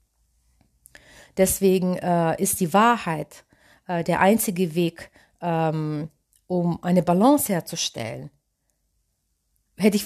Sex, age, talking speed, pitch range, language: female, 30-49, 95 wpm, 170-215 Hz, German